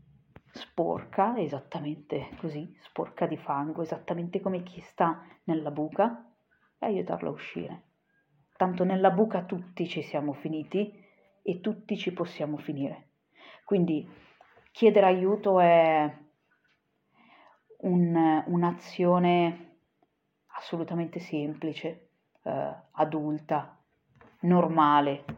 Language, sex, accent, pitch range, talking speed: Italian, female, native, 155-190 Hz, 90 wpm